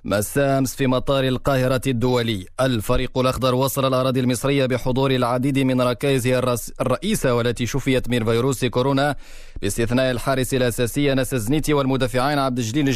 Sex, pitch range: male, 125-135 Hz